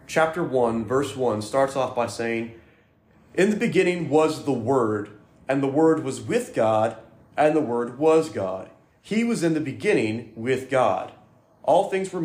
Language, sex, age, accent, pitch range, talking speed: English, male, 30-49, American, 125-165 Hz, 170 wpm